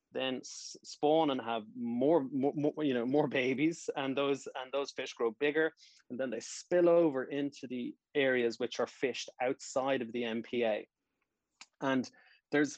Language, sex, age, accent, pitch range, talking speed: English, male, 20-39, Irish, 120-145 Hz, 165 wpm